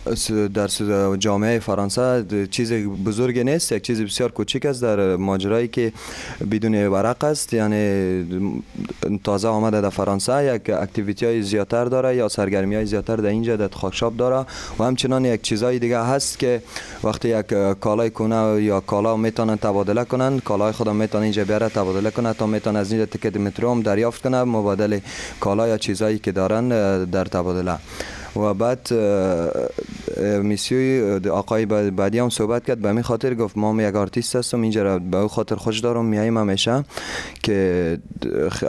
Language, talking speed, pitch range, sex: French, 150 wpm, 100-115 Hz, male